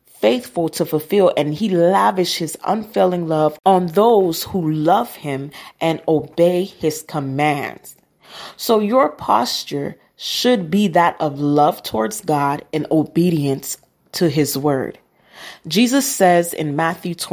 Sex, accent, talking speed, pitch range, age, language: female, American, 130 wpm, 155-190 Hz, 30-49, English